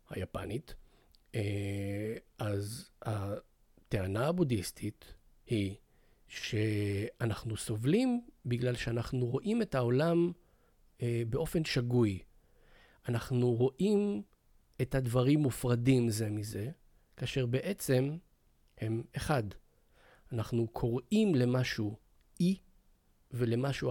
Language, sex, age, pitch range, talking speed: Hebrew, male, 40-59, 115-150 Hz, 75 wpm